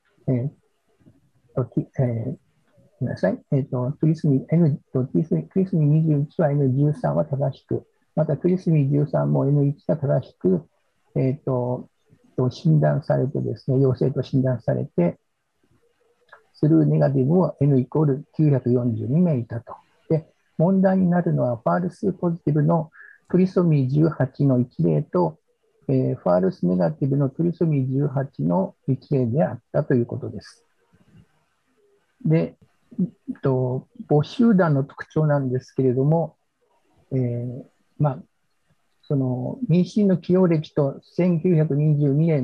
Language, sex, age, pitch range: Japanese, male, 60-79, 130-170 Hz